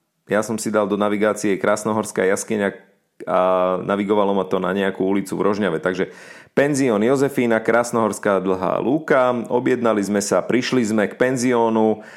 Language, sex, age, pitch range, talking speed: Slovak, male, 30-49, 95-120 Hz, 150 wpm